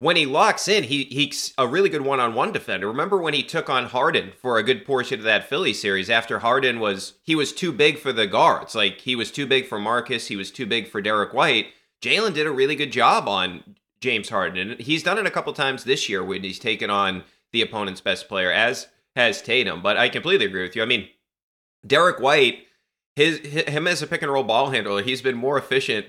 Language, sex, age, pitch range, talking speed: English, male, 30-49, 110-155 Hz, 230 wpm